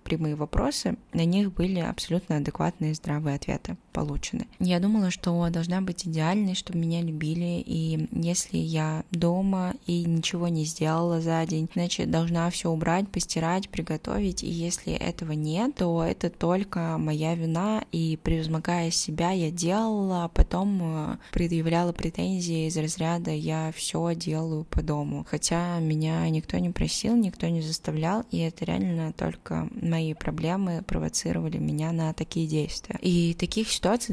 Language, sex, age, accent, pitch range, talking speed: Russian, female, 20-39, native, 160-180 Hz, 140 wpm